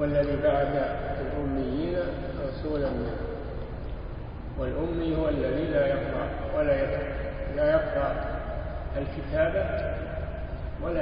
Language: Arabic